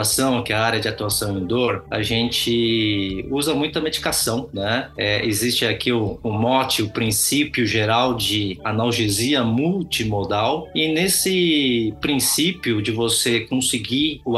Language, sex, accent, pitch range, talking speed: Portuguese, male, Brazilian, 115-145 Hz, 140 wpm